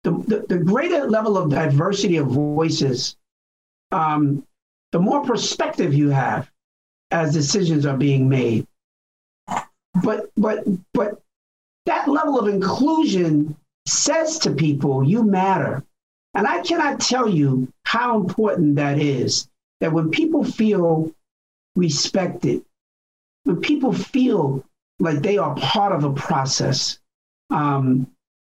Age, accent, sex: 50-69, American, male